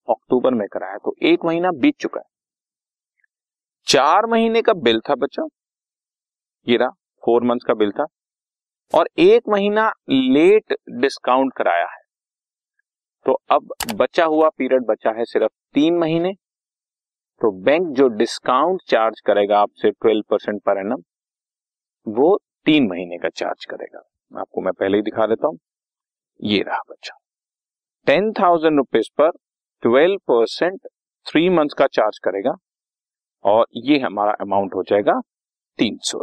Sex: male